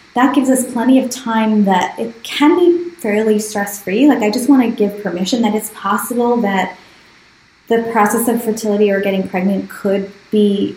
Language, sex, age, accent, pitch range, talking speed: English, female, 20-39, American, 190-245 Hz, 180 wpm